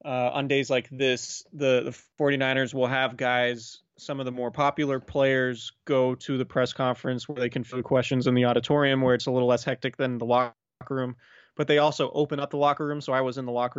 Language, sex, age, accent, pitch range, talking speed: English, male, 20-39, American, 125-150 Hz, 235 wpm